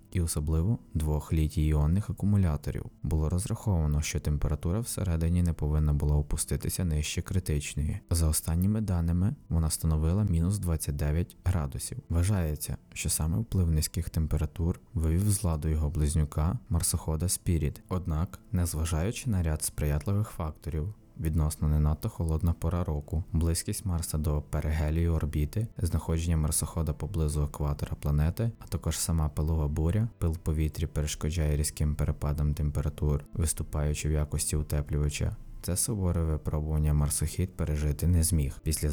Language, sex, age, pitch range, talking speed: Ukrainian, male, 20-39, 75-90 Hz, 130 wpm